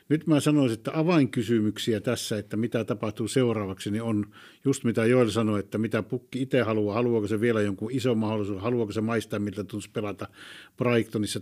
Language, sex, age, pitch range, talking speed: Finnish, male, 50-69, 105-135 Hz, 180 wpm